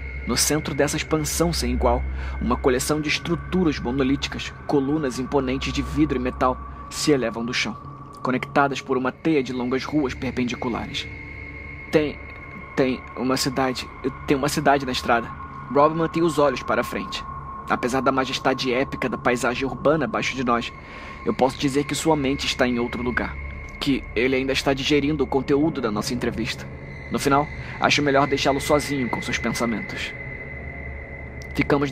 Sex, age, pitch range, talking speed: male, 20-39, 120-145 Hz, 160 wpm